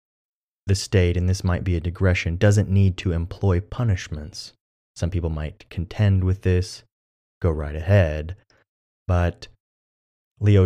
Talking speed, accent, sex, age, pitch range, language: 135 wpm, American, male, 30-49, 80-105 Hz, English